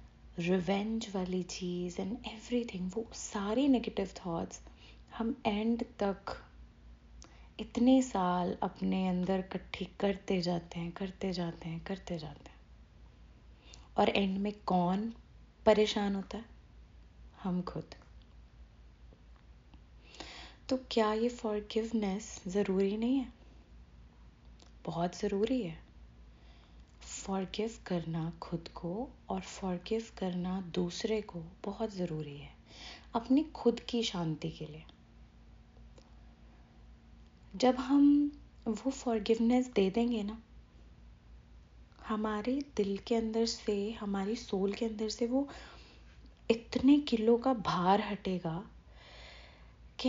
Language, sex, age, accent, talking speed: Hindi, female, 20-39, native, 105 wpm